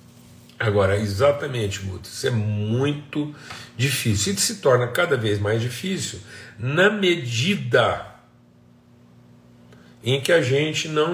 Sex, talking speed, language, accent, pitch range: male, 115 wpm, Portuguese, Brazilian, 105-140 Hz